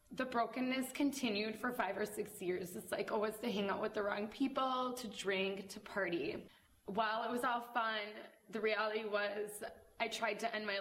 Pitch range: 200-235 Hz